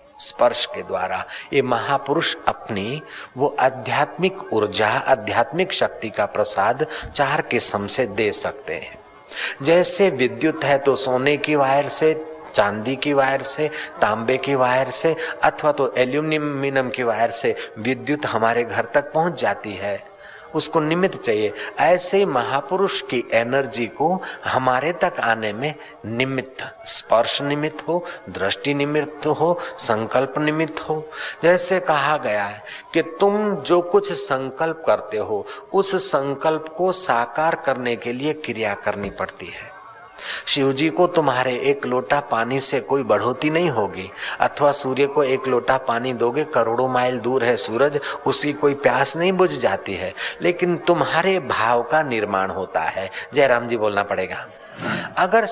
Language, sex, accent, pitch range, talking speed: Hindi, male, native, 125-165 Hz, 145 wpm